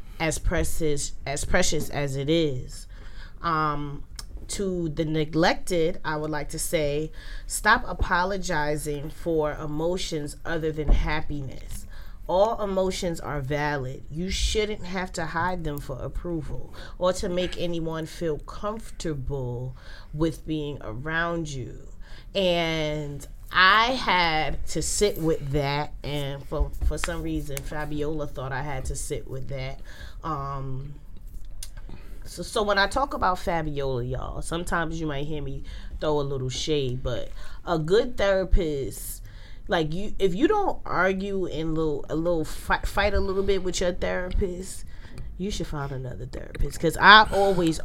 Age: 30-49